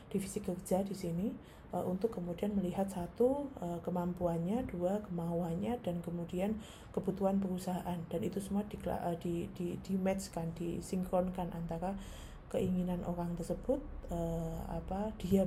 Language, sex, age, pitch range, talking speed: Indonesian, female, 20-39, 170-190 Hz, 130 wpm